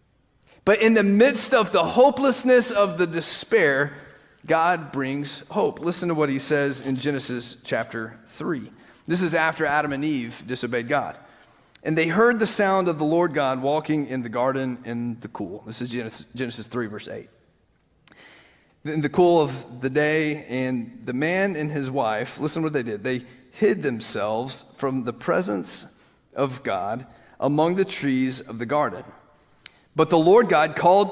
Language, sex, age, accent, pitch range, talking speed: English, male, 40-59, American, 130-175 Hz, 170 wpm